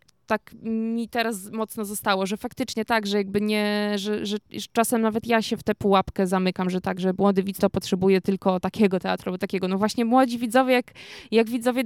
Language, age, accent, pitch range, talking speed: Polish, 20-39, native, 200-230 Hz, 200 wpm